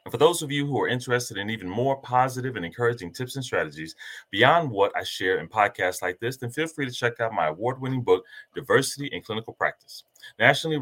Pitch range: 110-150 Hz